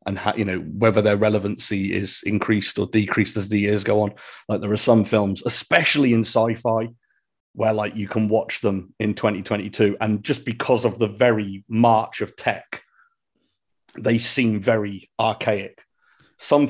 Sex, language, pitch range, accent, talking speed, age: male, English, 105-130 Hz, British, 160 wpm, 40-59